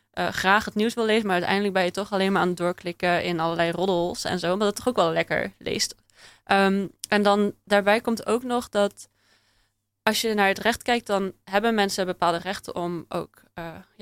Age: 20-39